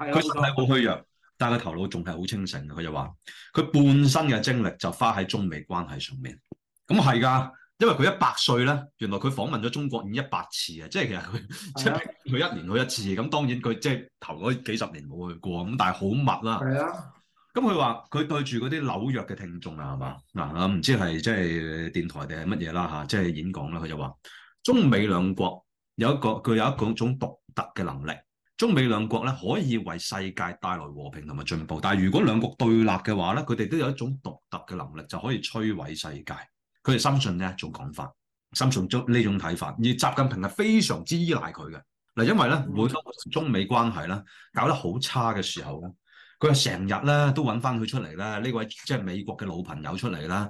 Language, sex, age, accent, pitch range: Chinese, male, 30-49, native, 95-130 Hz